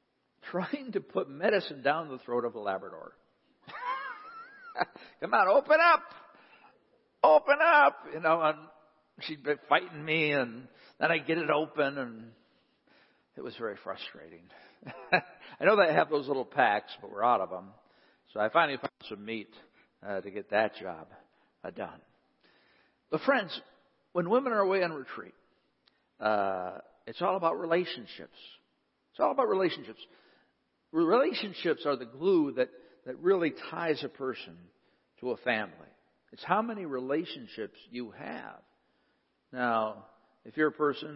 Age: 60-79